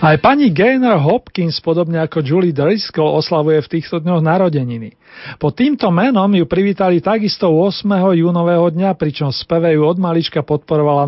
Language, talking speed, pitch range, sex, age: Slovak, 145 wpm, 155-195 Hz, male, 40-59